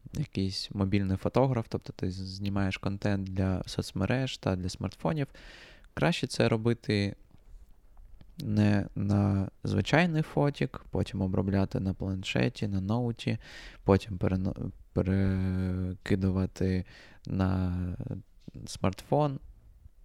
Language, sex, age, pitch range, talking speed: Ukrainian, male, 20-39, 95-115 Hz, 90 wpm